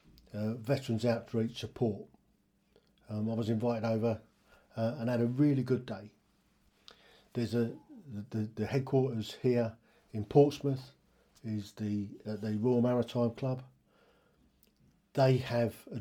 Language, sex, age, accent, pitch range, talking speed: English, male, 50-69, British, 110-130 Hz, 125 wpm